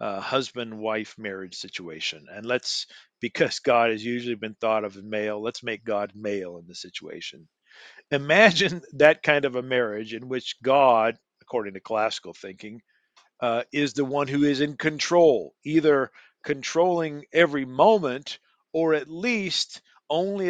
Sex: male